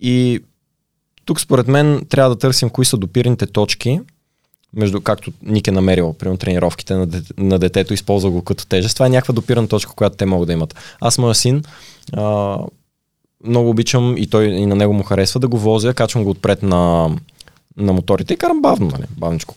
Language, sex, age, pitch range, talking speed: Bulgarian, male, 20-39, 90-115 Hz, 185 wpm